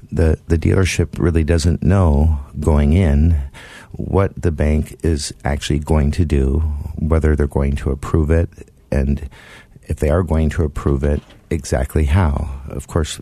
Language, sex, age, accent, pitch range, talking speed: English, male, 50-69, American, 75-85 Hz, 155 wpm